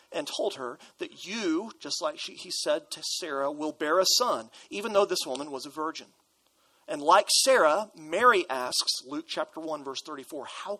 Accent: American